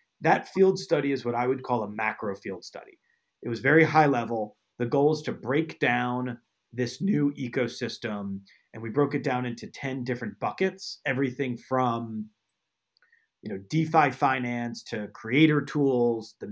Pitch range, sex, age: 120-145 Hz, male, 30-49